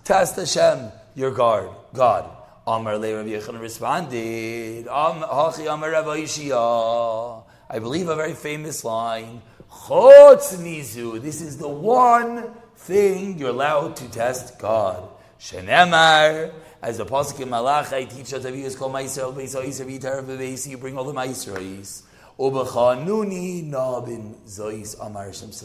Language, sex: English, male